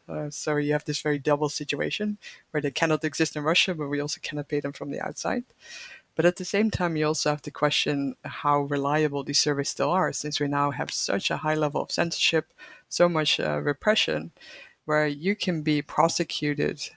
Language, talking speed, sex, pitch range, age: English, 205 wpm, female, 145-155 Hz, 60-79